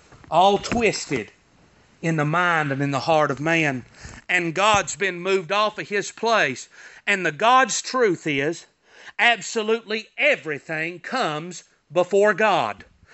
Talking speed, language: 135 wpm, English